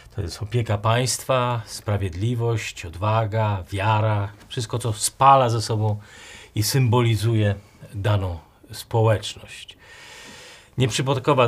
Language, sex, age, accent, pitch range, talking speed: Polish, male, 40-59, native, 105-125 Hz, 90 wpm